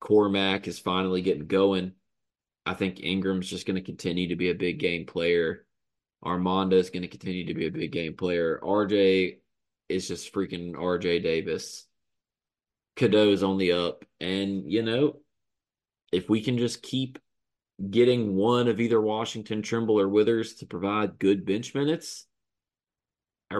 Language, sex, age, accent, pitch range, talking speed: English, male, 20-39, American, 90-115 Hz, 155 wpm